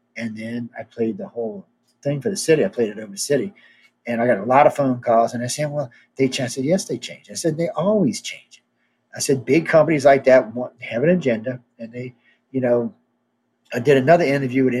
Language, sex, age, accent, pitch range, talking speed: English, male, 40-59, American, 120-150 Hz, 245 wpm